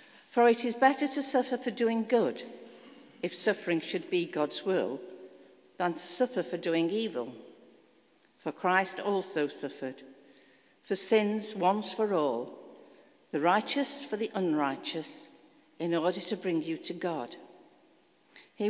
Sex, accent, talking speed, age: female, British, 140 wpm, 60-79